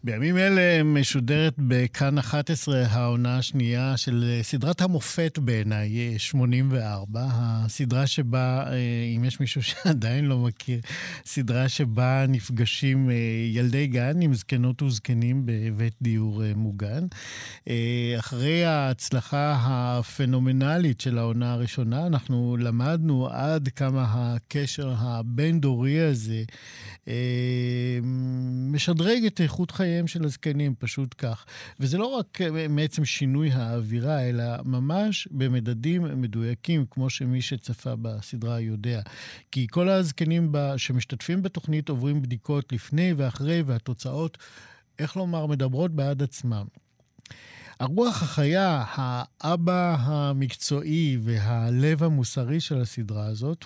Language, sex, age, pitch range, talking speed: Hebrew, male, 50-69, 120-150 Hz, 100 wpm